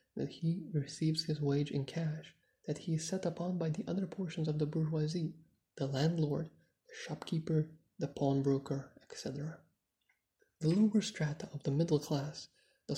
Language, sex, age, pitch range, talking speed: English, male, 30-49, 150-175 Hz, 155 wpm